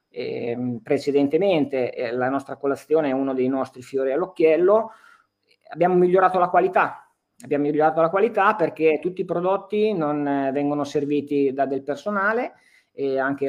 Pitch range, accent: 125-145 Hz, native